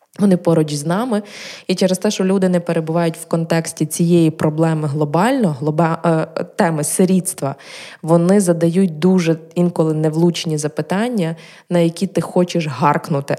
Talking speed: 130 wpm